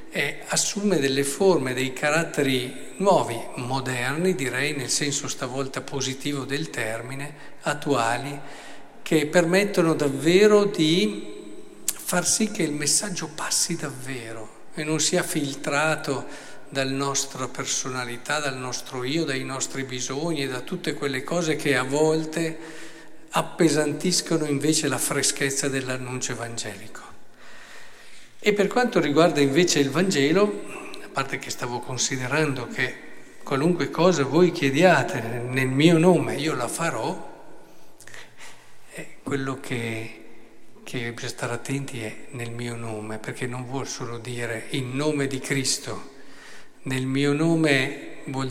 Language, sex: Italian, male